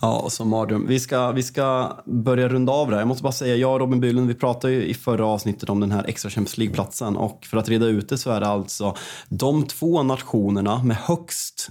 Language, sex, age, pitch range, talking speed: Swedish, male, 20-39, 100-120 Hz, 235 wpm